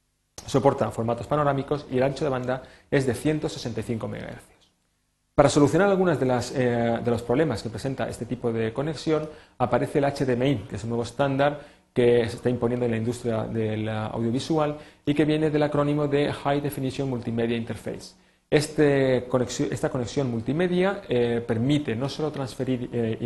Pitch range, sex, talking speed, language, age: 120-145 Hz, male, 170 wpm, Spanish, 30-49